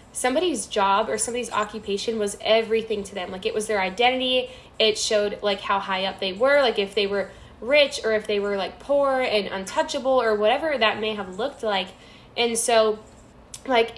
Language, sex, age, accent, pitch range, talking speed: English, female, 10-29, American, 205-230 Hz, 195 wpm